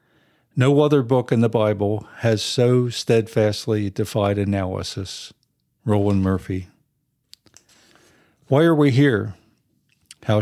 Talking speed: 105 wpm